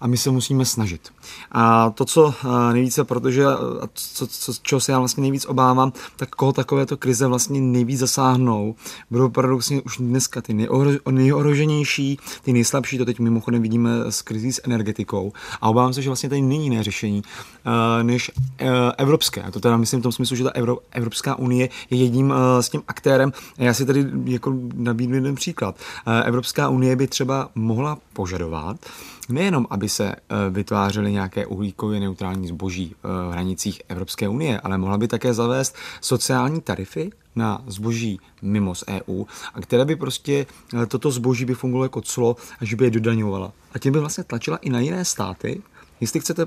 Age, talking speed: 30-49, 170 wpm